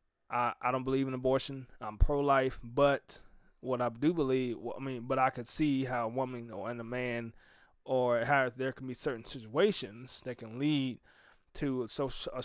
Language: English